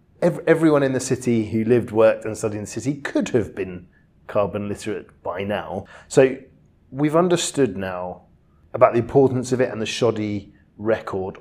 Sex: male